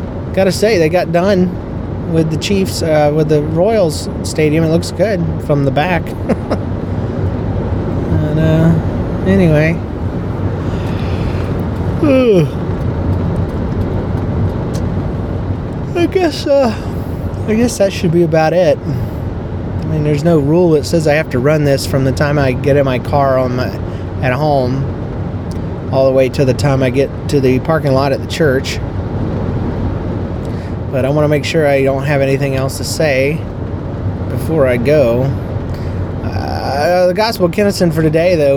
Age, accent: 30-49, American